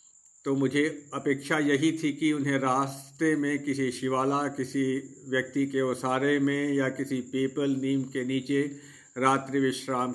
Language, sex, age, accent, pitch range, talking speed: Hindi, male, 50-69, native, 130-145 Hz, 140 wpm